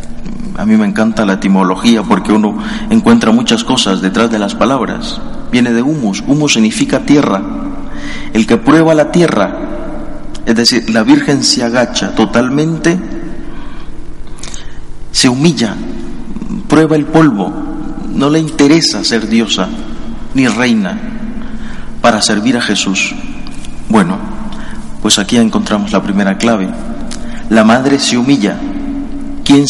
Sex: male